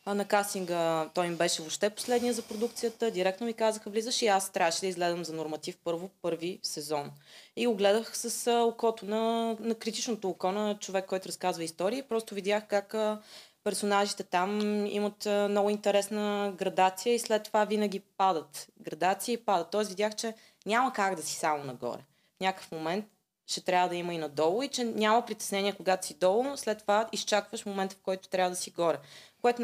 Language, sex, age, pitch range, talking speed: Bulgarian, female, 20-39, 170-220 Hz, 185 wpm